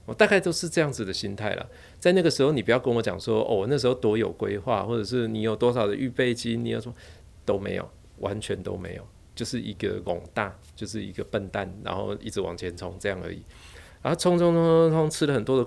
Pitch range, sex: 90-115 Hz, male